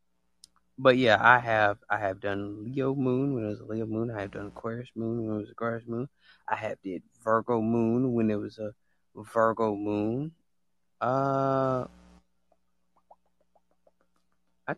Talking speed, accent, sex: 155 wpm, American, male